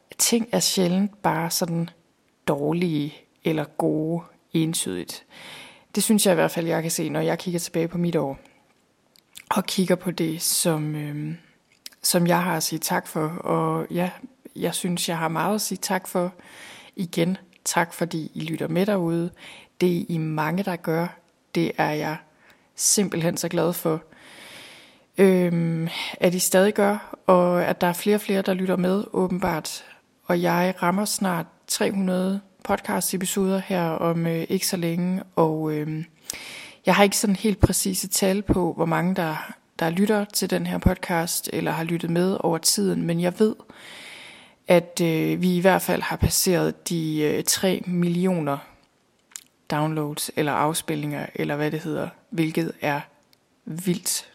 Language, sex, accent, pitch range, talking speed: Danish, female, native, 165-190 Hz, 160 wpm